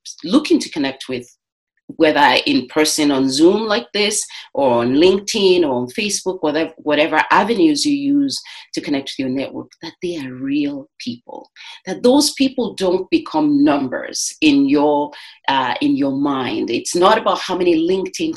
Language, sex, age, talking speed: English, female, 40-59, 165 wpm